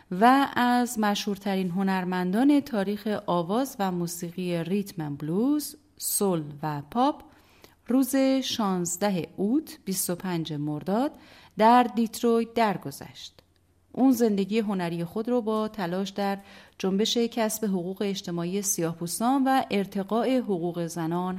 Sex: female